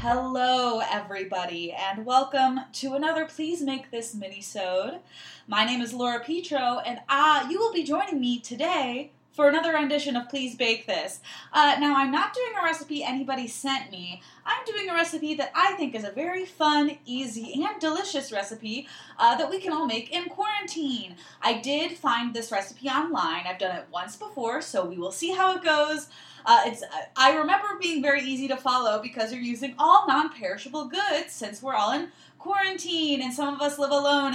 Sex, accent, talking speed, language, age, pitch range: female, American, 185 wpm, English, 20-39, 220-295 Hz